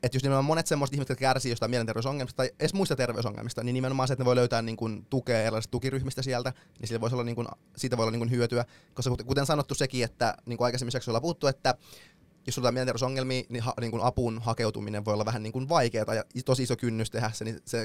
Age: 20-39